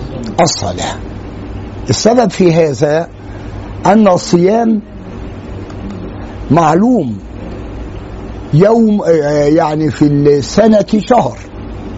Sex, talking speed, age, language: male, 60 wpm, 50-69, Arabic